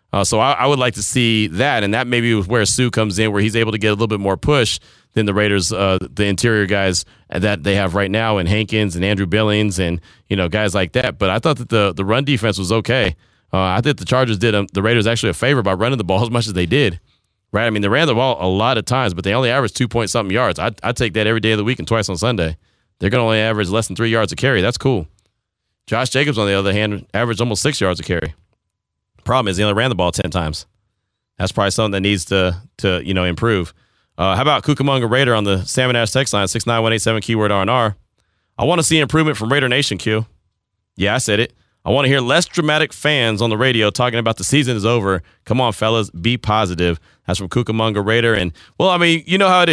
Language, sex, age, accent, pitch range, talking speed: English, male, 30-49, American, 100-125 Hz, 265 wpm